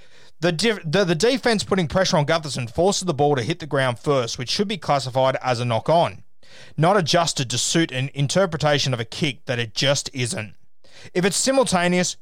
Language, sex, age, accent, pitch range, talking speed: English, male, 30-49, Australian, 130-185 Hz, 195 wpm